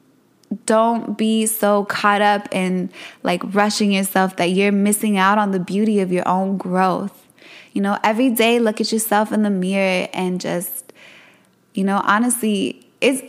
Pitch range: 195-225 Hz